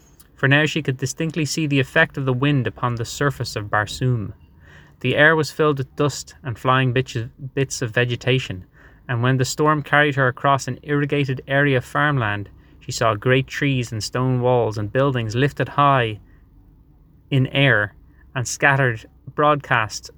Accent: Irish